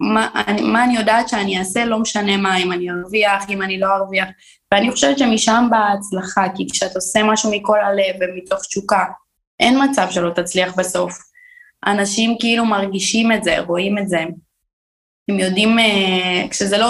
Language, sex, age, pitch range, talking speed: Hebrew, female, 20-39, 185-220 Hz, 170 wpm